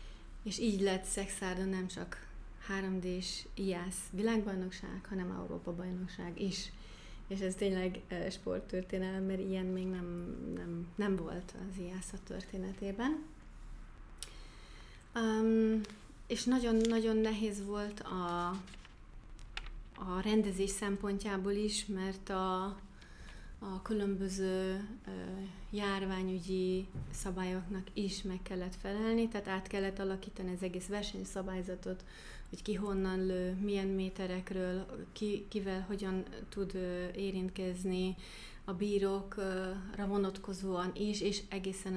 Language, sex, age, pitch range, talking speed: Hungarian, female, 30-49, 185-200 Hz, 95 wpm